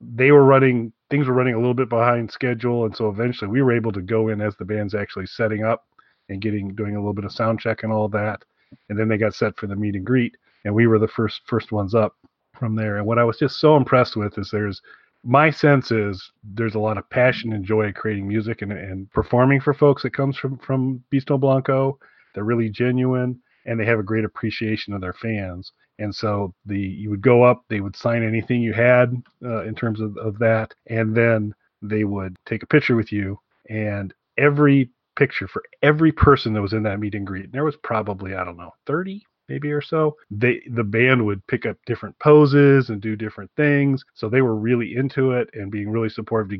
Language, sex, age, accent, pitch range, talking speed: English, male, 30-49, American, 105-125 Hz, 230 wpm